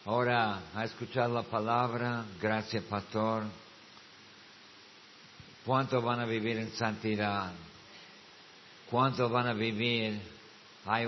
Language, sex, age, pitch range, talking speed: Spanish, male, 50-69, 105-120 Hz, 95 wpm